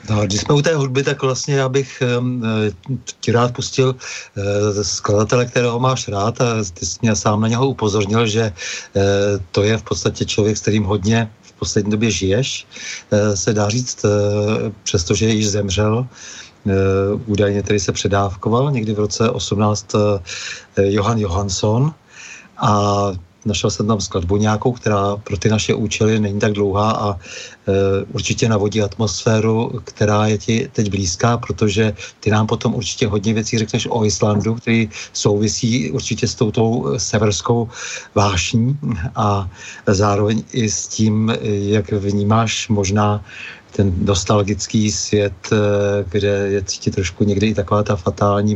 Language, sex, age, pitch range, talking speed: Czech, male, 40-59, 100-115 Hz, 150 wpm